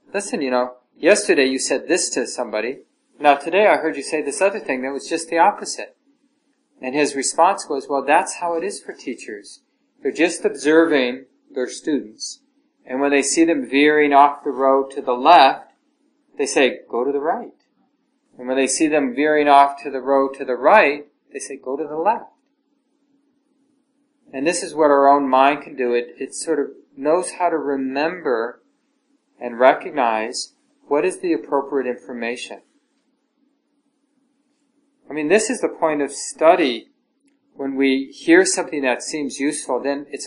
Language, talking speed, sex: English, 175 wpm, male